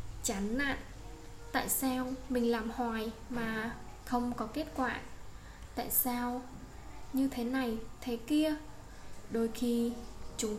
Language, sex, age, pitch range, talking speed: Vietnamese, female, 10-29, 230-275 Hz, 125 wpm